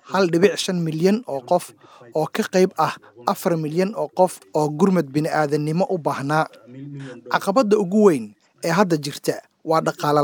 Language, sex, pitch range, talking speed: English, male, 150-190 Hz, 160 wpm